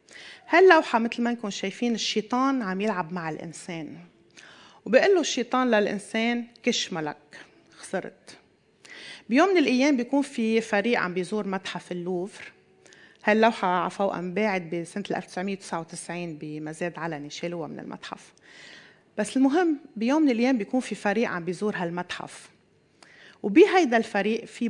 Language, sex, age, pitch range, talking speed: Arabic, female, 30-49, 185-240 Hz, 125 wpm